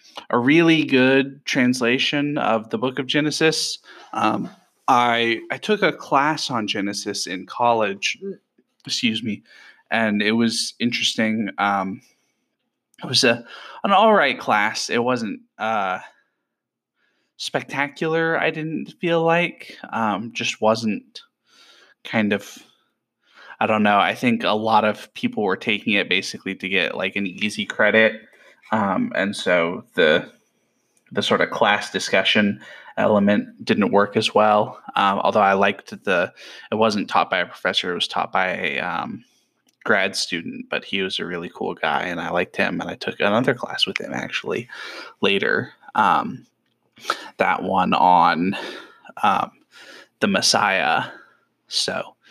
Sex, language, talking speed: male, English, 145 wpm